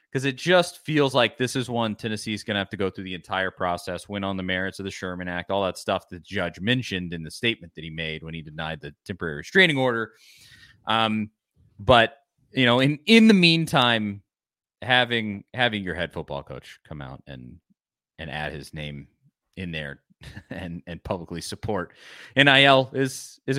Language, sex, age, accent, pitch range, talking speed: English, male, 30-49, American, 90-130 Hz, 195 wpm